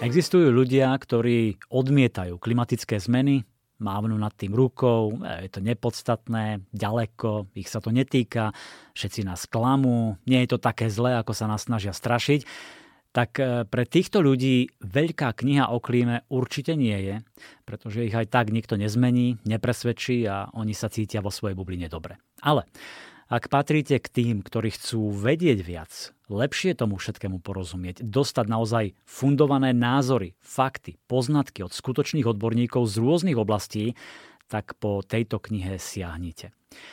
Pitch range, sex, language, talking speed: 105-130 Hz, male, Slovak, 140 wpm